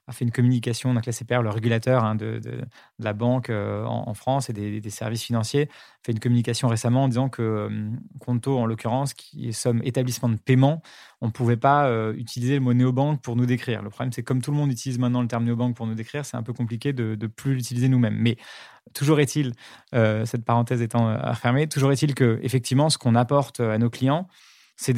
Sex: male